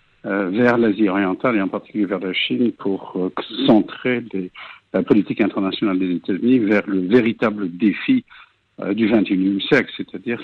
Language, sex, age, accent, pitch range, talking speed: French, male, 60-79, French, 110-140 Hz, 155 wpm